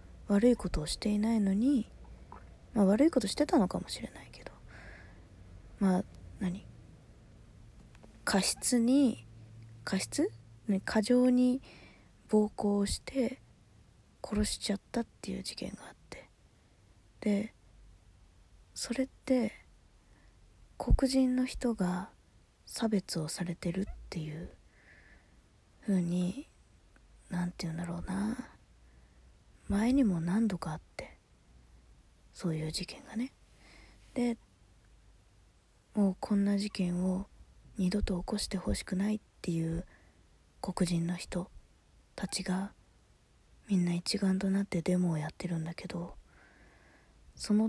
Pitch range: 155-215 Hz